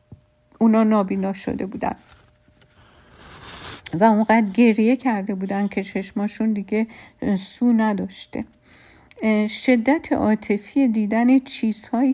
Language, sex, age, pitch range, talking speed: Persian, female, 50-69, 200-240 Hz, 90 wpm